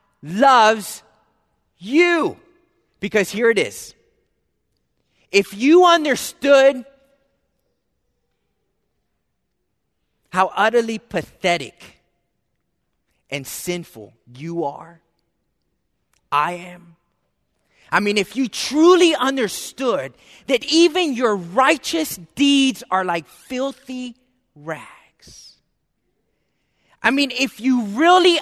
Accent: American